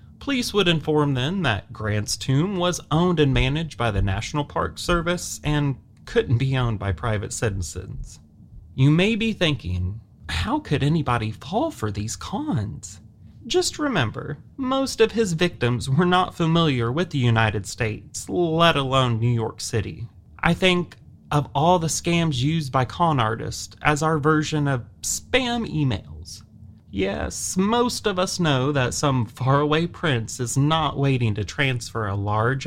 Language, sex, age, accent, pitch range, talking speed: English, male, 30-49, American, 115-175 Hz, 155 wpm